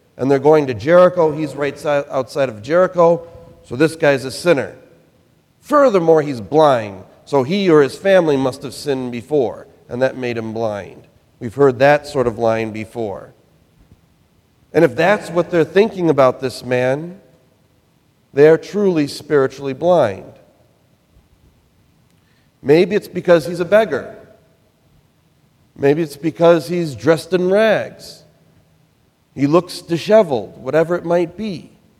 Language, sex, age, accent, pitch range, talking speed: English, male, 40-59, American, 135-175 Hz, 135 wpm